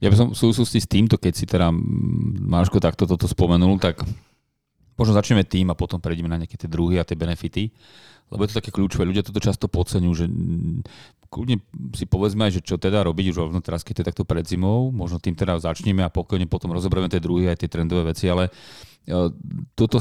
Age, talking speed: 30-49, 210 wpm